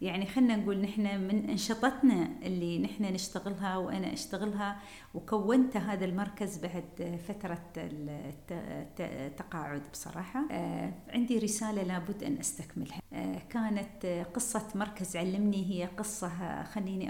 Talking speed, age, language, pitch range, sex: 105 wpm, 40-59, Arabic, 185-225 Hz, female